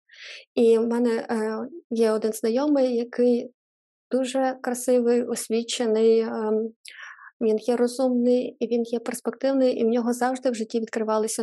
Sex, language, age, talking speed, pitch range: female, Ukrainian, 20-39, 120 wpm, 225-250 Hz